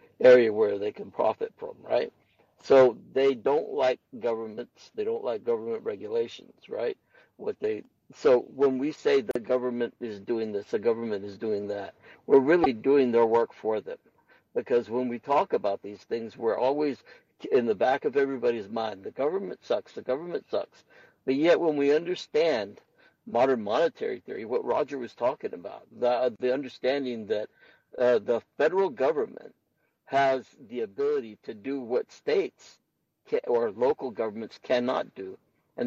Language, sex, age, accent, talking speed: English, male, 60-79, American, 160 wpm